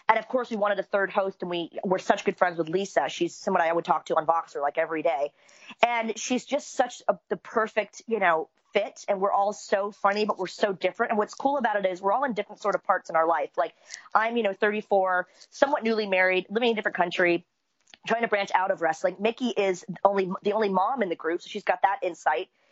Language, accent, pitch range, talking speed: English, American, 185-220 Hz, 255 wpm